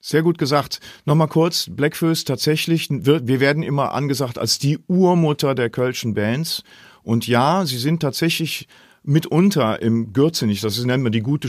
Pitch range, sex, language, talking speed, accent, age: 110-150 Hz, male, German, 165 wpm, German, 40-59